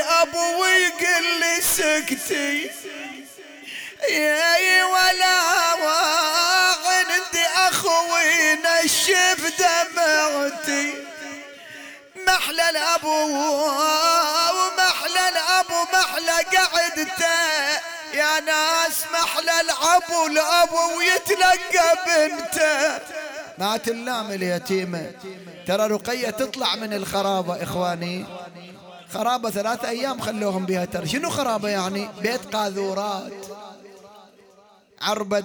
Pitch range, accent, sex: 195-330 Hz, Lebanese, male